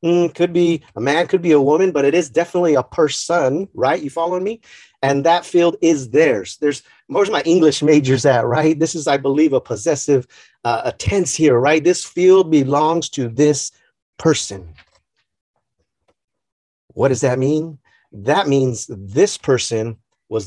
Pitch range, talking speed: 130-170 Hz, 165 wpm